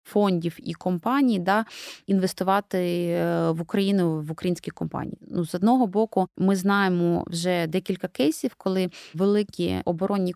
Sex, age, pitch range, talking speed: female, 20-39, 175-200 Hz, 125 wpm